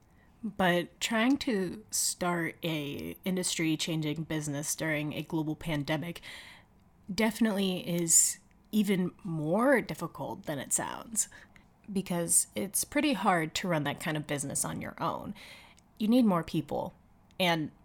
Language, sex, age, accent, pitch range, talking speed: English, female, 20-39, American, 155-180 Hz, 130 wpm